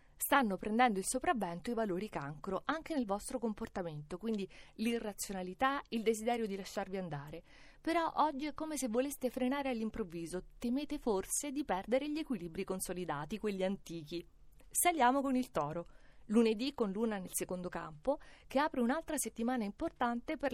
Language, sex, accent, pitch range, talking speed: Italian, female, native, 185-265 Hz, 150 wpm